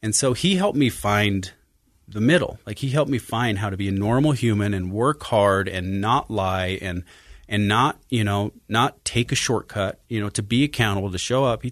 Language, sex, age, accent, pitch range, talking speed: English, male, 30-49, American, 95-120 Hz, 220 wpm